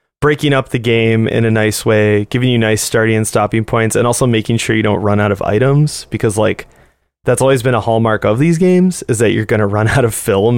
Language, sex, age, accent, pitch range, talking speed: English, male, 20-39, American, 105-130 Hz, 250 wpm